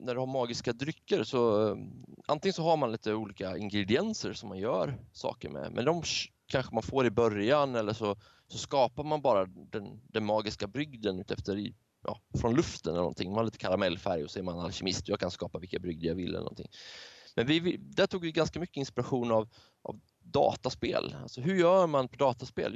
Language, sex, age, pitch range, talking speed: Swedish, male, 20-39, 105-140 Hz, 200 wpm